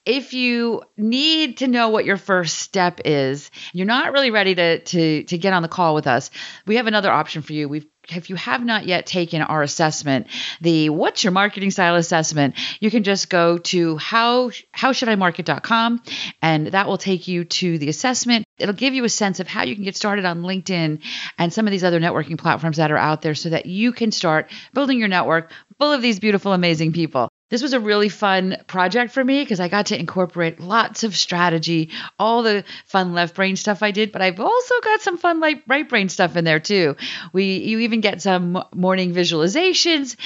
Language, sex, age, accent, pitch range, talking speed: English, female, 40-59, American, 170-225 Hz, 210 wpm